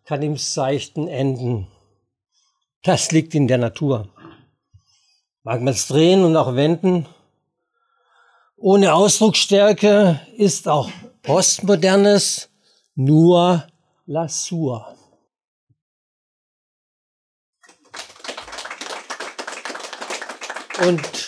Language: English